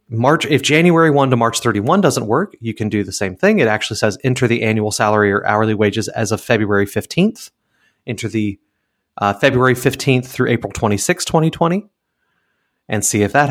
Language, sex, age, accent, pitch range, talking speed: English, male, 30-49, American, 110-140 Hz, 185 wpm